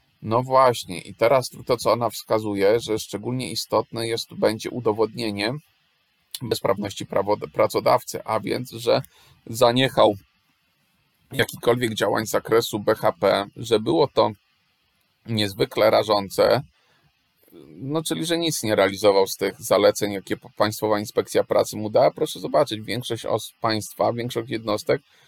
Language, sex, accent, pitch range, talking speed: Polish, male, native, 110-140 Hz, 120 wpm